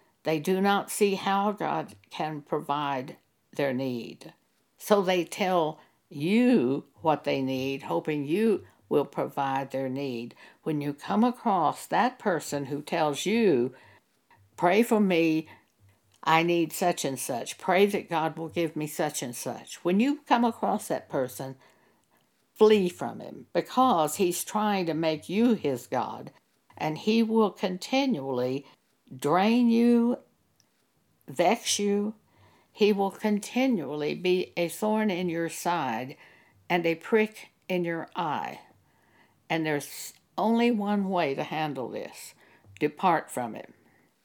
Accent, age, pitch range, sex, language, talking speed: American, 60-79, 145-210 Hz, female, English, 135 wpm